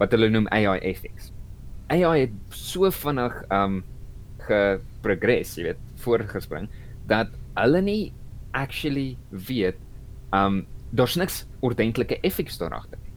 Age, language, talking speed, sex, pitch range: 20-39, English, 110 wpm, male, 100-125 Hz